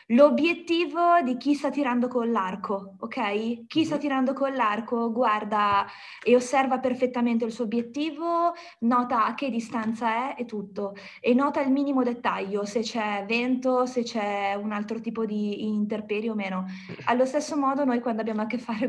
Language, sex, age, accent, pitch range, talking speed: Italian, female, 20-39, native, 220-255 Hz, 170 wpm